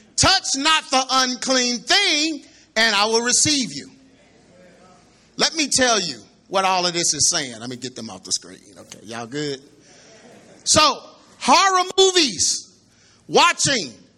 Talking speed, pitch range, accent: 145 wpm, 230-340 Hz, American